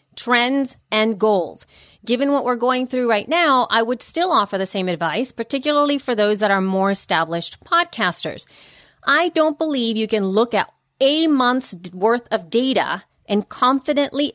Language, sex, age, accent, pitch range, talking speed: English, female, 30-49, American, 205-260 Hz, 165 wpm